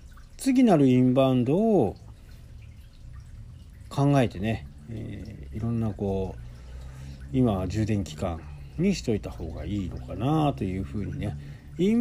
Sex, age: male, 40-59